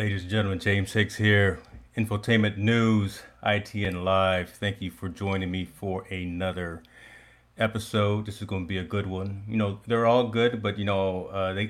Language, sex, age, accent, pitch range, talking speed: English, male, 30-49, American, 95-110 Hz, 185 wpm